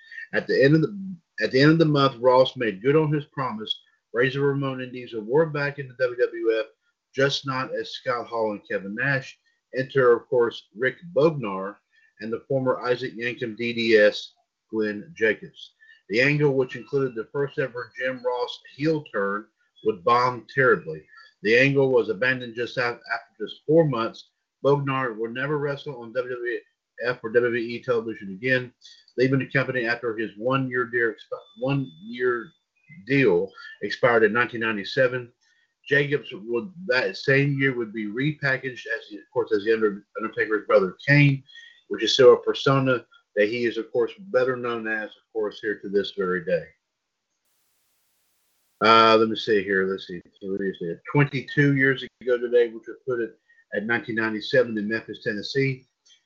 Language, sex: English, male